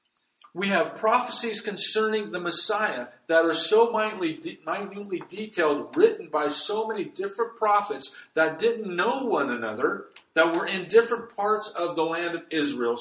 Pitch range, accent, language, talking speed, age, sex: 150-215 Hz, American, English, 150 wpm, 50-69, male